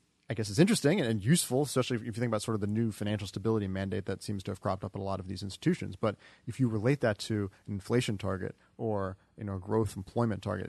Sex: male